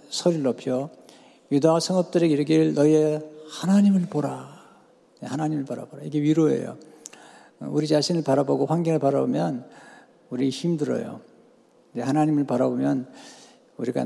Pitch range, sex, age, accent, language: 140-175 Hz, male, 50-69, native, Korean